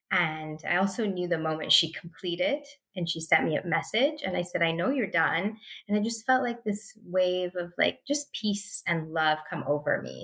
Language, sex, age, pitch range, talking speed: English, female, 20-39, 165-225 Hz, 215 wpm